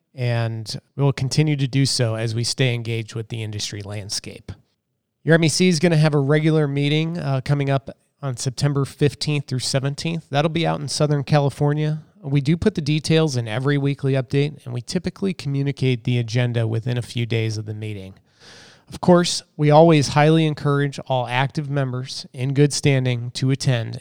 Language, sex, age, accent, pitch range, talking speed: English, male, 30-49, American, 120-145 Hz, 185 wpm